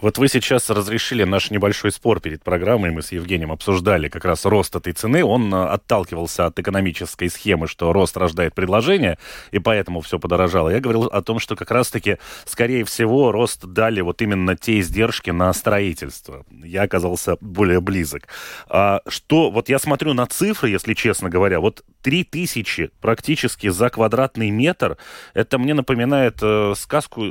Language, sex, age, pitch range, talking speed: Russian, male, 20-39, 95-130 Hz, 160 wpm